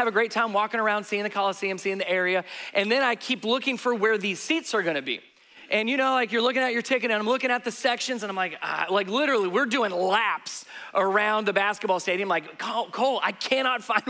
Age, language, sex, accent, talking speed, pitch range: 30-49, English, male, American, 245 wpm, 215-290 Hz